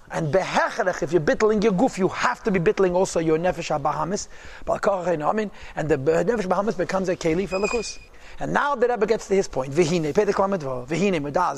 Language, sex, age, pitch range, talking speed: English, male, 30-49, 165-200 Hz, 200 wpm